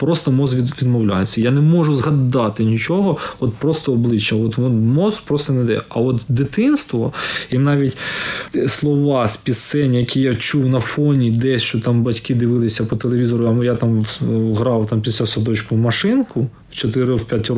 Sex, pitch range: male, 110-130 Hz